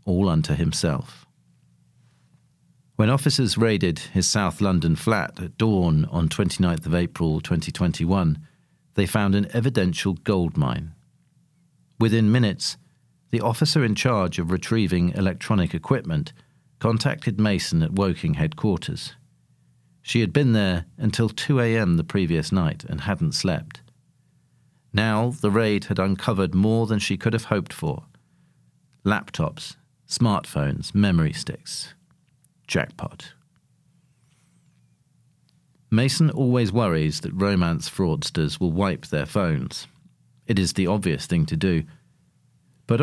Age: 40-59